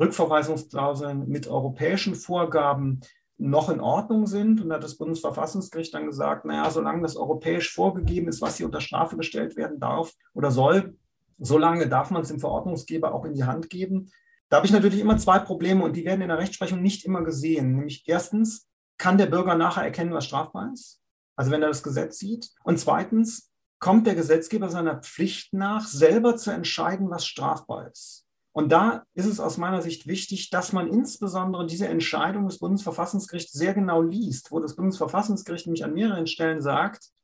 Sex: male